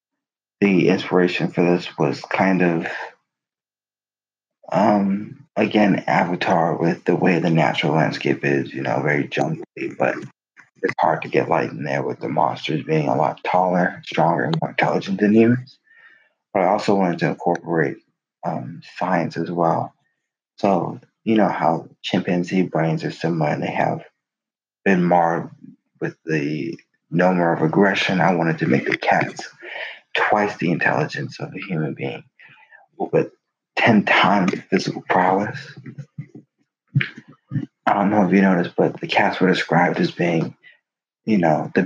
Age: 30-49